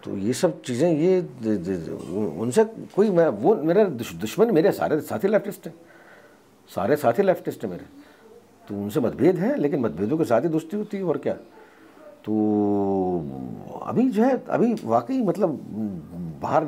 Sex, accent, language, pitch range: male, native, Hindi, 125-210 Hz